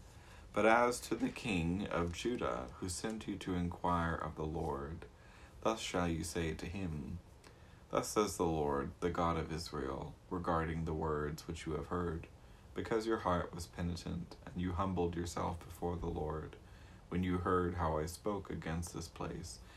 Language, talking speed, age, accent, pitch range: English, 175 wpm, 30-49, American, 80-90 Hz